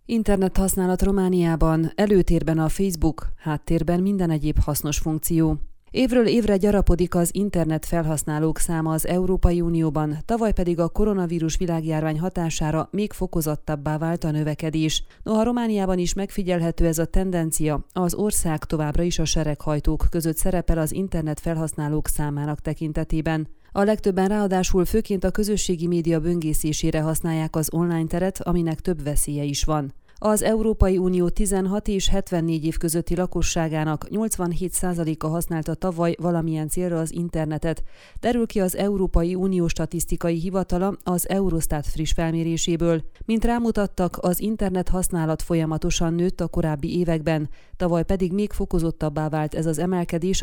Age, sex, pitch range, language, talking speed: 30-49, female, 160-185 Hz, Hungarian, 135 wpm